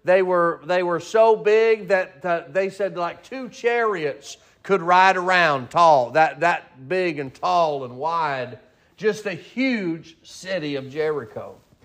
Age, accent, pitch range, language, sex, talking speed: 40-59, American, 200-265 Hz, English, male, 150 wpm